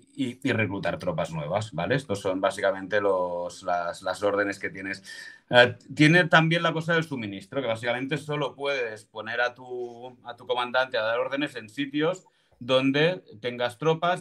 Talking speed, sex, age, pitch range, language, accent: 165 wpm, male, 30-49, 100-125 Hz, Spanish, Spanish